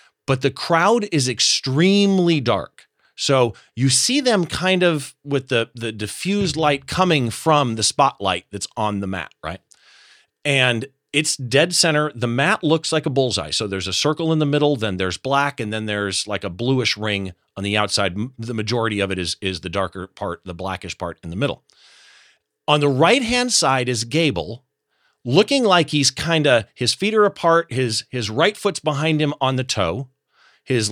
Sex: male